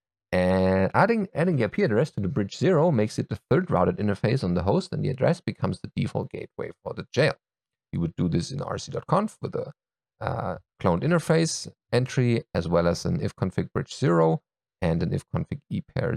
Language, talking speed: English, 190 wpm